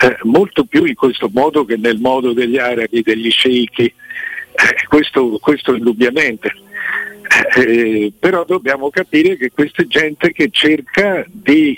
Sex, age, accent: male, 60-79, native